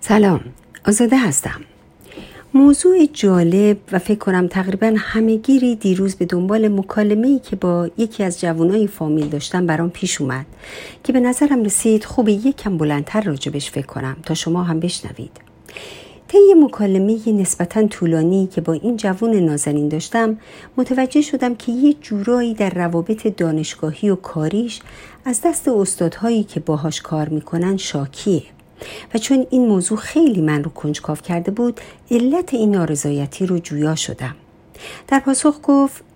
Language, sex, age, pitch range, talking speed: Persian, female, 50-69, 165-235 Hz, 140 wpm